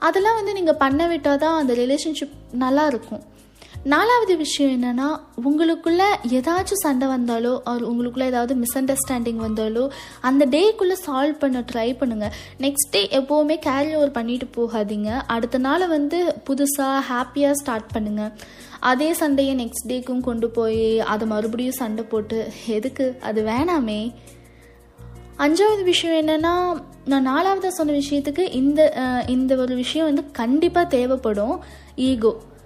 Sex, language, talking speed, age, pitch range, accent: female, Tamil, 120 wpm, 20-39, 230-310 Hz, native